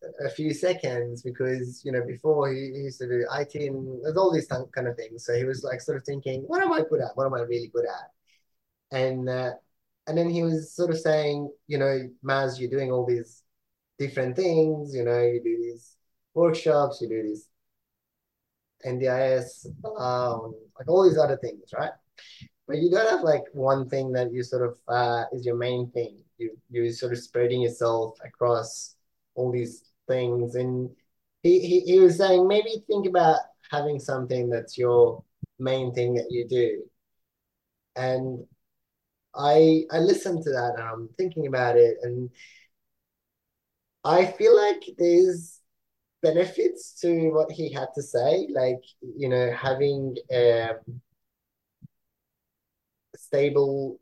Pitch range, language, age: 120-160 Hz, English, 20-39